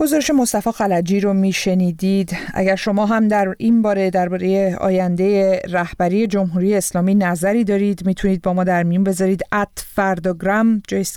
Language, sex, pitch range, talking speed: Persian, female, 185-215 Hz, 150 wpm